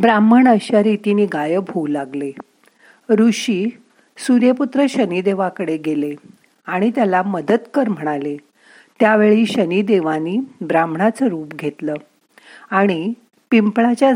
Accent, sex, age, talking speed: native, female, 50-69, 95 wpm